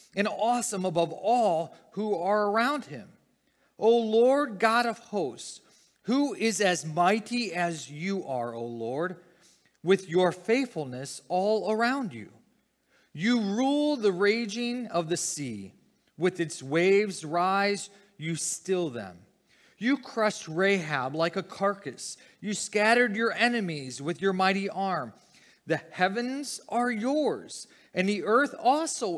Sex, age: male, 40-59